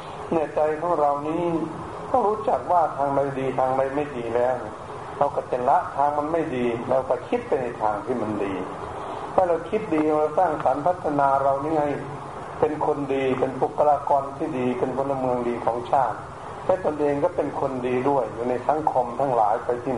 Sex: male